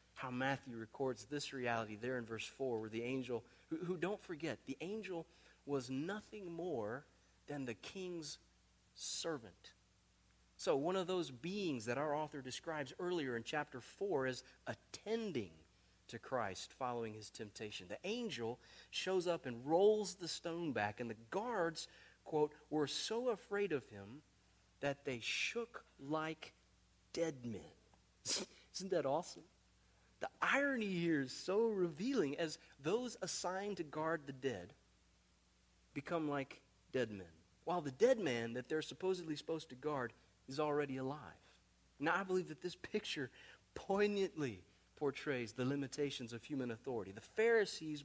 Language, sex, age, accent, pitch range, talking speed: English, male, 40-59, American, 120-170 Hz, 145 wpm